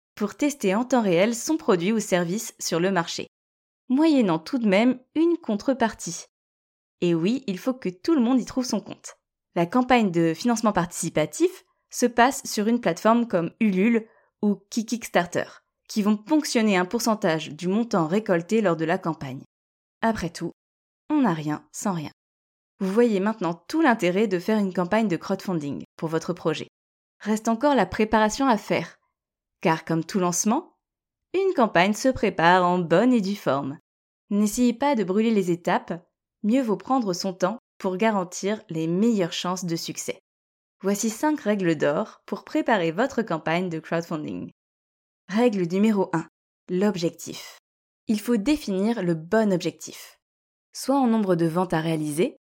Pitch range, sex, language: 170-230 Hz, female, French